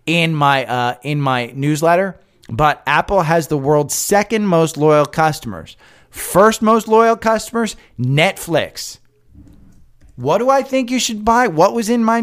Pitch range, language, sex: 140-185 Hz, English, male